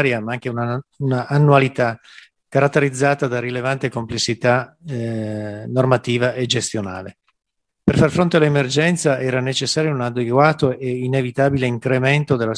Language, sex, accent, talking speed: Italian, male, native, 120 wpm